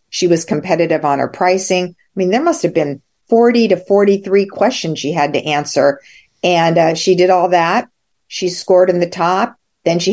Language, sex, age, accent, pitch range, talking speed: English, female, 50-69, American, 165-195 Hz, 195 wpm